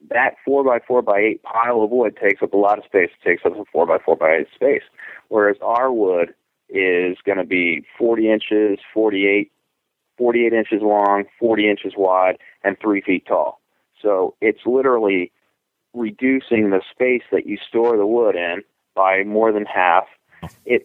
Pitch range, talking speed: 100-125 Hz, 155 wpm